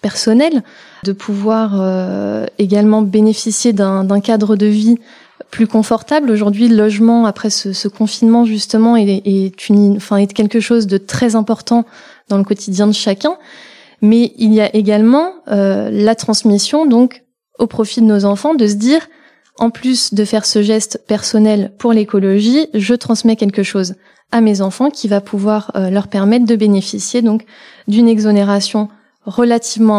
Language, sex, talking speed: French, female, 160 wpm